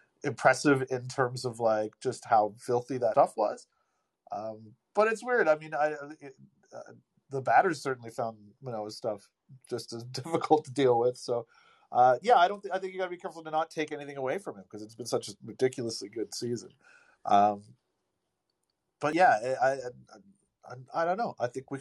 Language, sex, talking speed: English, male, 195 wpm